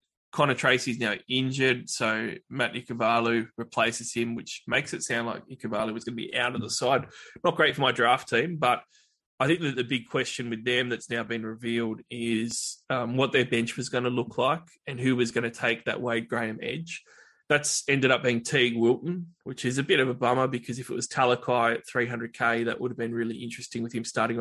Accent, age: Australian, 20-39